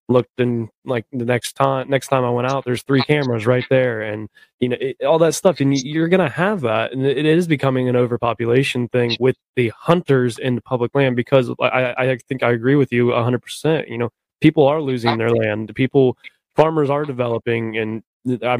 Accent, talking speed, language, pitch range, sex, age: American, 210 wpm, English, 120-140 Hz, male, 20-39